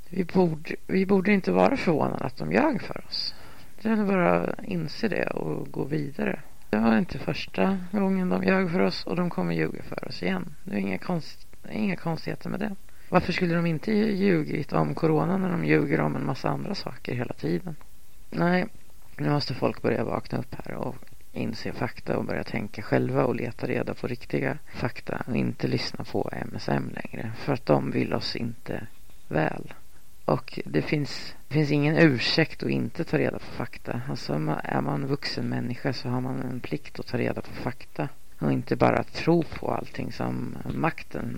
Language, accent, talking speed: Swedish, native, 190 wpm